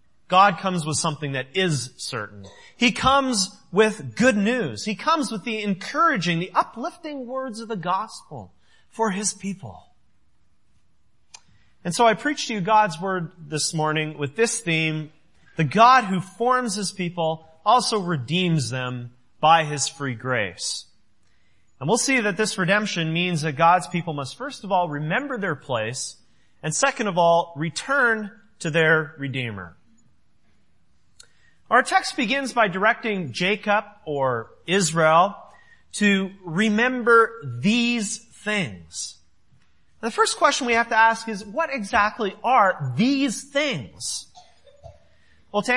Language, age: English, 30-49